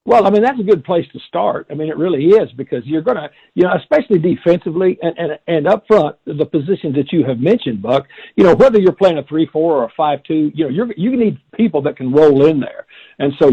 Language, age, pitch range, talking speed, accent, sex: English, 60-79, 140-185 Hz, 255 wpm, American, male